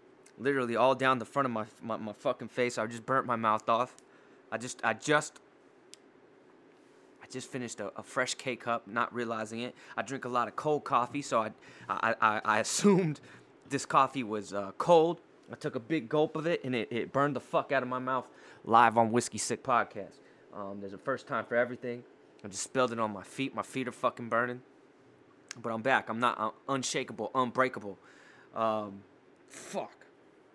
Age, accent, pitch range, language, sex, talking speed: 20-39, American, 110-135 Hz, English, male, 195 wpm